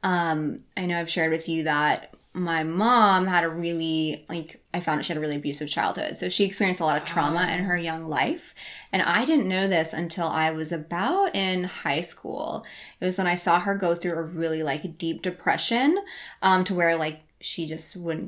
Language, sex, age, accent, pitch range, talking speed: English, female, 20-39, American, 160-185 Hz, 215 wpm